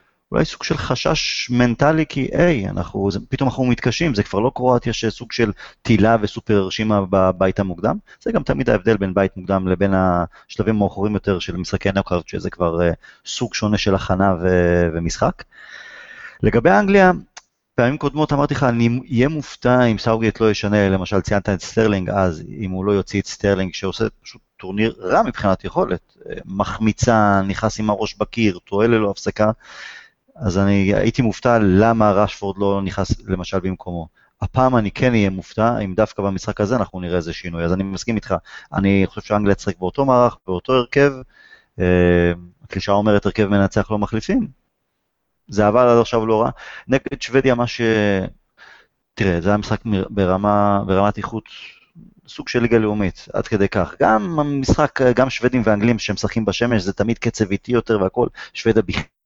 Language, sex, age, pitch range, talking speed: Hebrew, male, 30-49, 95-115 Hz, 160 wpm